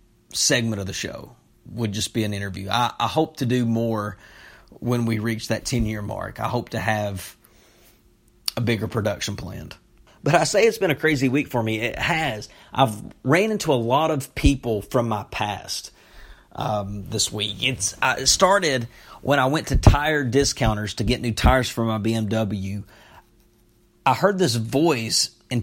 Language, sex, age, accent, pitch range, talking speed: English, male, 40-59, American, 110-140 Hz, 175 wpm